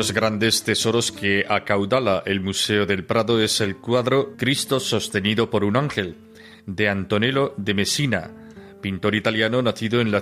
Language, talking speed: Spanish, 155 wpm